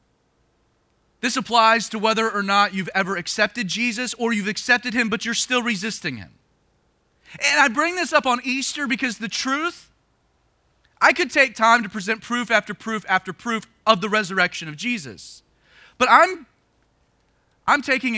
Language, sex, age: English, male, 30-49